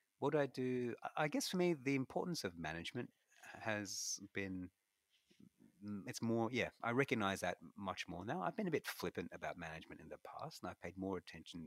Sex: male